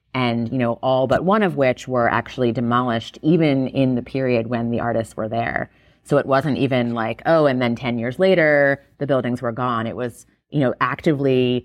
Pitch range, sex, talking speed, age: 120-150 Hz, female, 205 wpm, 30-49